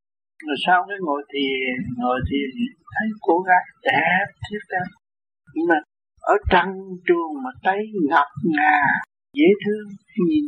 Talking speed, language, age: 145 wpm, Vietnamese, 60-79